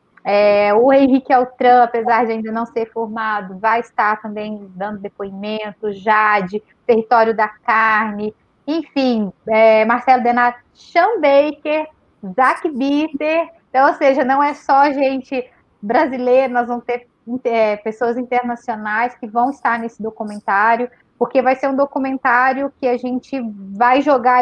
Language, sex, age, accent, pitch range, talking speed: Portuguese, female, 20-39, Brazilian, 225-265 Hz, 130 wpm